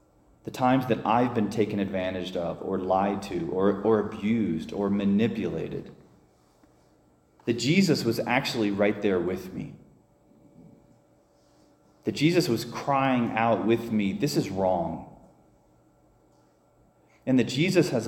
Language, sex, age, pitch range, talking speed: English, male, 30-49, 100-130 Hz, 125 wpm